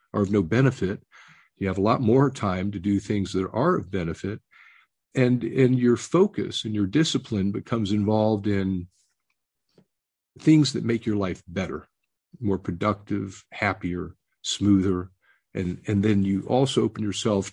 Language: English